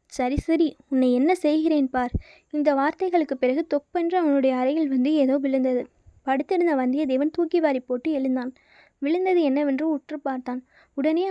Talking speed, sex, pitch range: 135 wpm, female, 270-325 Hz